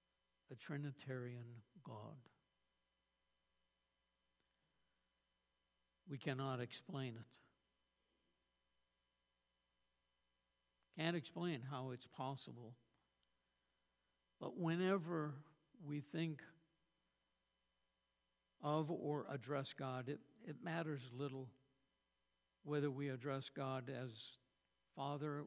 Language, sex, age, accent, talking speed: English, male, 60-79, American, 70 wpm